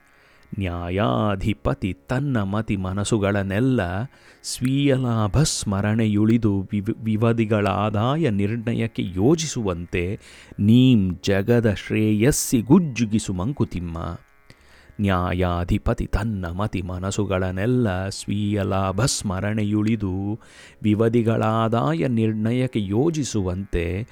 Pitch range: 95-130 Hz